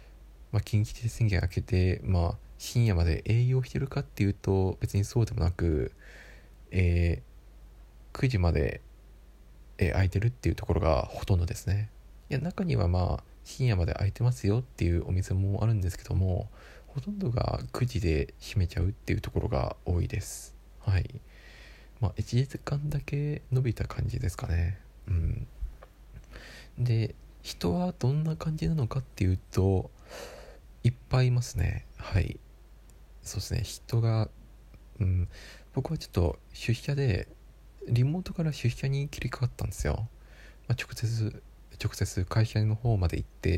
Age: 20-39